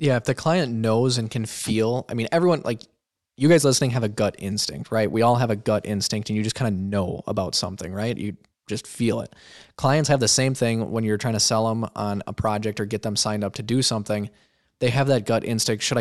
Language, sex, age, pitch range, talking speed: English, male, 20-39, 105-120 Hz, 250 wpm